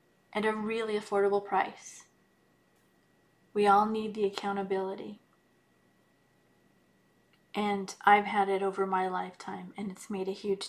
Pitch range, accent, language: 195-215 Hz, American, English